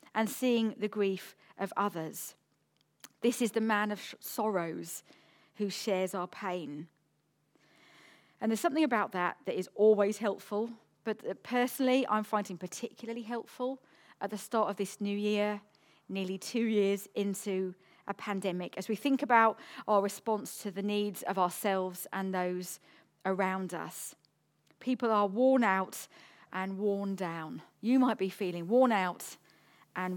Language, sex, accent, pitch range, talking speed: English, female, British, 190-230 Hz, 145 wpm